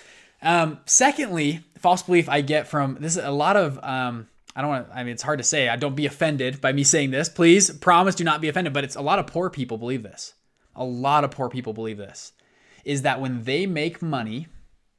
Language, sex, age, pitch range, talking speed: English, male, 20-39, 135-175 Hz, 235 wpm